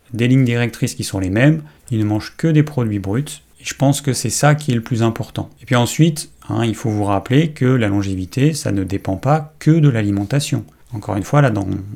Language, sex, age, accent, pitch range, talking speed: French, male, 30-49, French, 105-140 Hz, 240 wpm